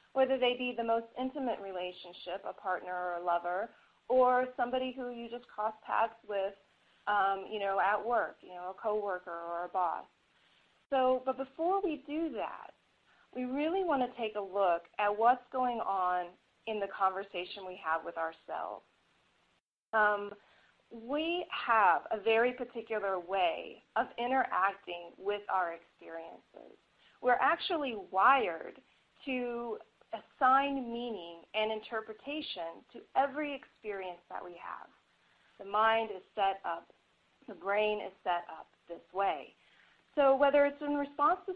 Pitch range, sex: 190-260 Hz, female